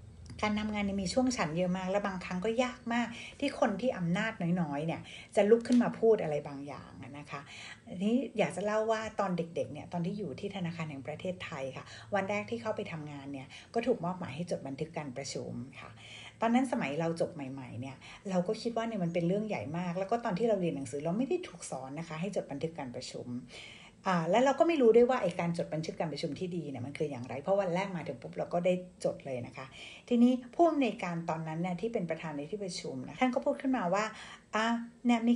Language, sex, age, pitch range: Thai, female, 60-79, 150-220 Hz